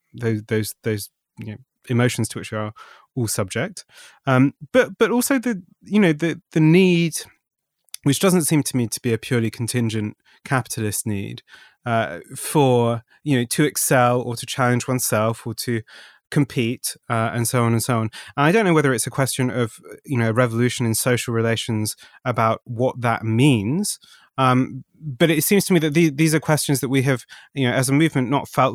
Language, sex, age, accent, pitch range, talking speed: English, male, 30-49, British, 115-140 Hz, 195 wpm